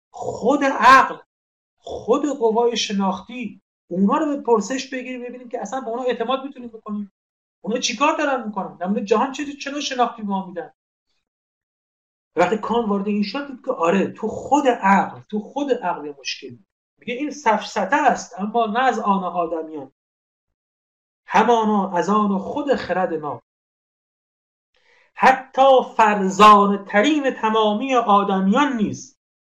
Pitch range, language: 185-245 Hz, Persian